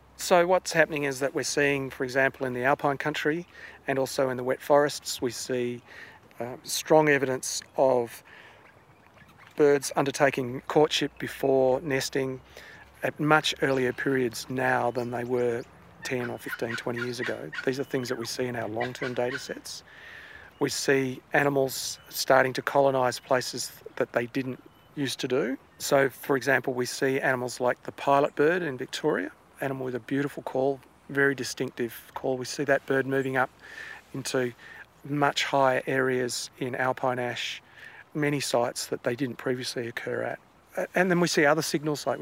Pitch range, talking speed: 130-145 Hz, 165 wpm